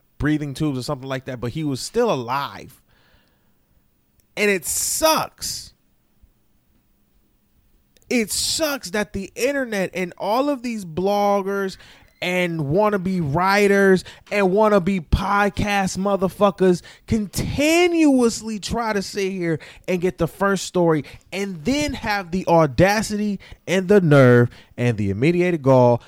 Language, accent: English, American